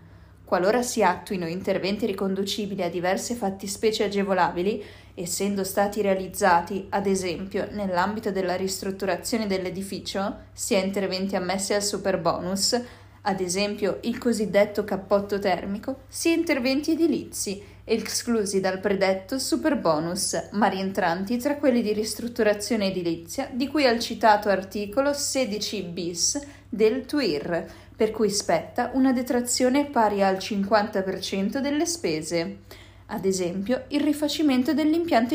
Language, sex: Italian, female